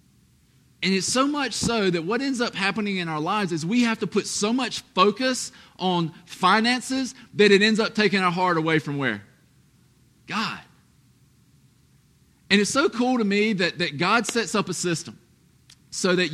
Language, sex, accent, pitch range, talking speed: English, male, American, 170-230 Hz, 180 wpm